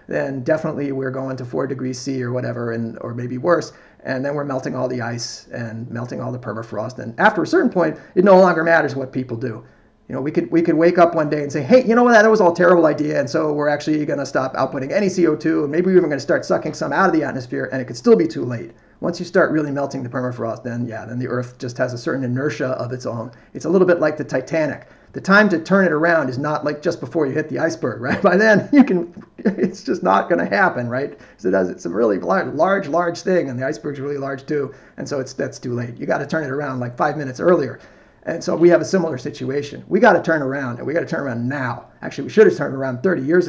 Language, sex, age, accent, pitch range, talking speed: English, male, 30-49, American, 130-170 Hz, 275 wpm